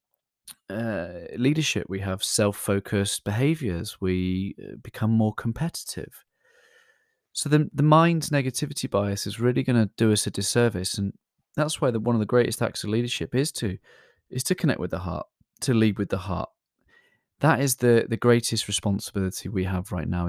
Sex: male